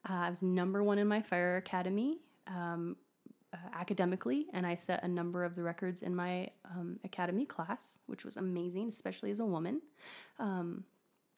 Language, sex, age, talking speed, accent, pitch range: English, female, 20-39, 175 wpm, American, 175-205 Hz